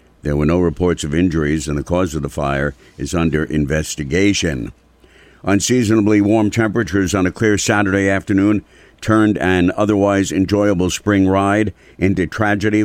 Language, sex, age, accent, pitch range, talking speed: English, male, 60-79, American, 80-95 Hz, 145 wpm